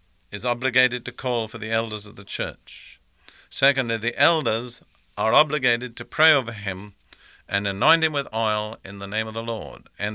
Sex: male